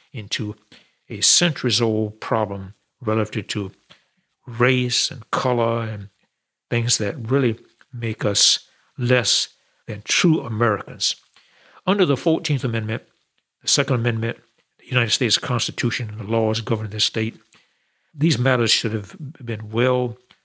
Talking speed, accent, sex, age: 125 wpm, American, male, 60-79